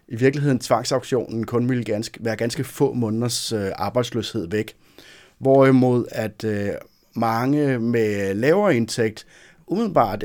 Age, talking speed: 30-49, 105 wpm